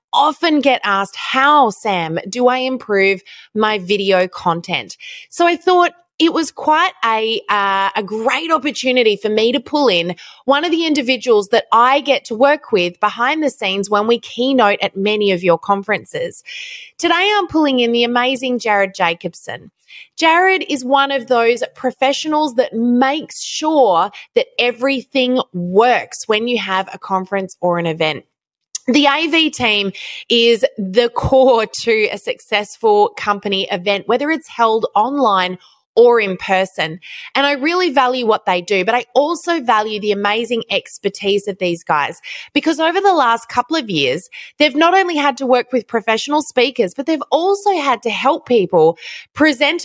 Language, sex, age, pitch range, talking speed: English, female, 20-39, 205-295 Hz, 165 wpm